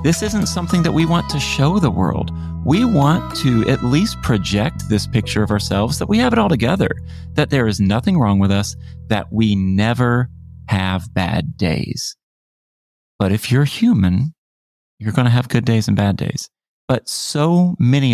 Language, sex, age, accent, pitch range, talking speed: English, male, 40-59, American, 100-135 Hz, 180 wpm